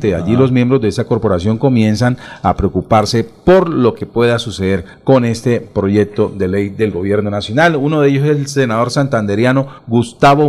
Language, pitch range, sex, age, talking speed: Spanish, 110-145 Hz, male, 40-59, 170 wpm